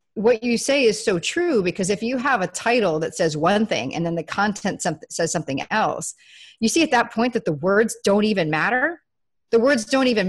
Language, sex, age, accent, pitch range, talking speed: English, female, 40-59, American, 175-235 Hz, 220 wpm